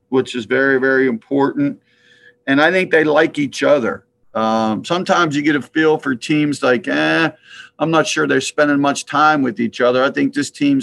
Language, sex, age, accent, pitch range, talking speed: English, male, 50-69, American, 130-155 Hz, 200 wpm